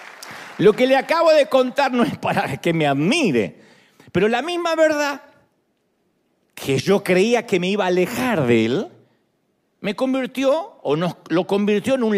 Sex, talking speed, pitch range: male, 170 wpm, 145-240 Hz